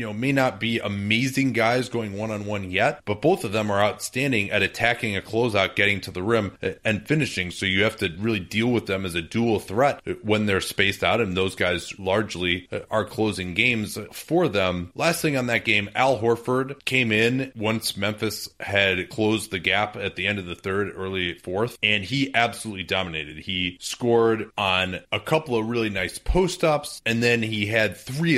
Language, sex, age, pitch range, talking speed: English, male, 30-49, 95-115 Hz, 190 wpm